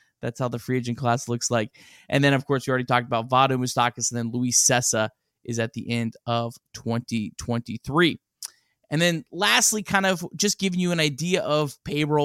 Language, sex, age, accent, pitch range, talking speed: English, male, 20-39, American, 120-150 Hz, 195 wpm